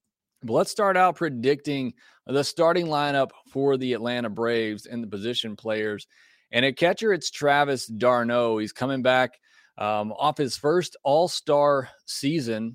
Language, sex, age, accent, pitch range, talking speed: English, male, 30-49, American, 115-145 Hz, 145 wpm